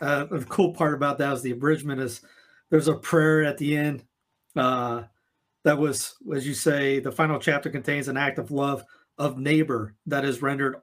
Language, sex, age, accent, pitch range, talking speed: English, male, 30-49, American, 140-165 Hz, 195 wpm